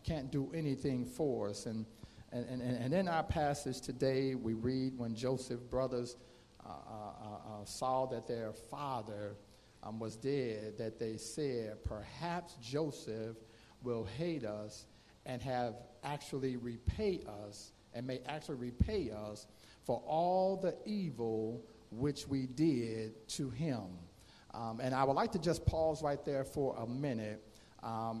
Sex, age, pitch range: male, 50-69, 120-165 Hz